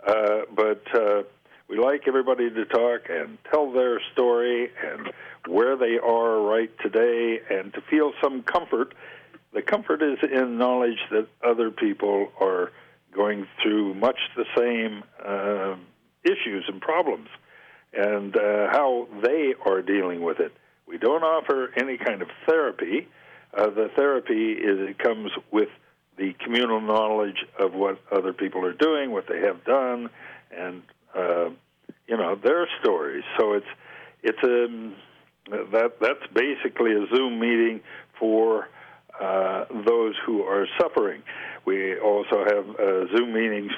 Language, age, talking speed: English, 60-79, 140 wpm